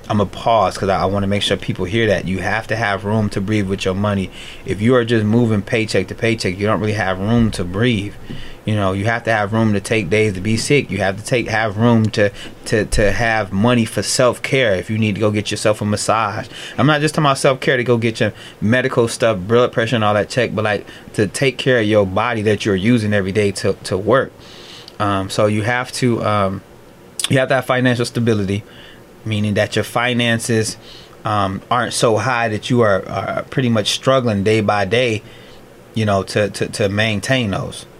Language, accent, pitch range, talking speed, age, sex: English, American, 100-120 Hz, 225 wpm, 20-39, male